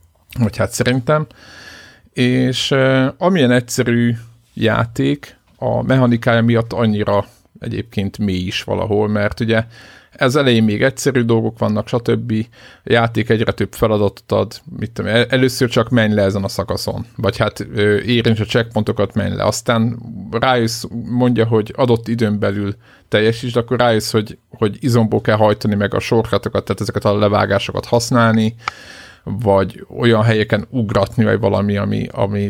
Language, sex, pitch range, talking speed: Hungarian, male, 105-120 Hz, 145 wpm